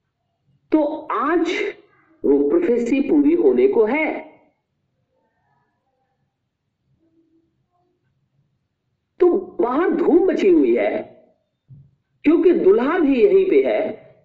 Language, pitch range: Hindi, 295-400 Hz